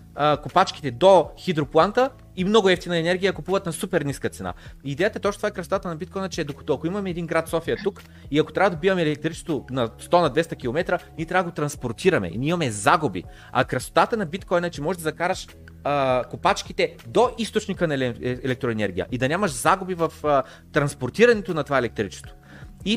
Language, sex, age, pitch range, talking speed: Bulgarian, male, 30-49, 135-180 Hz, 190 wpm